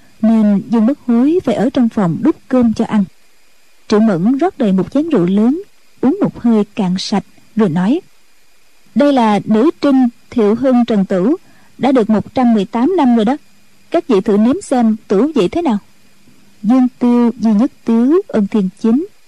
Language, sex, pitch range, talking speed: Vietnamese, female, 205-265 Hz, 180 wpm